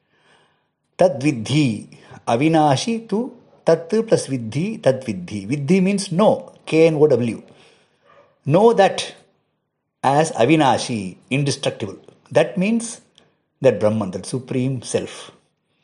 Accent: Indian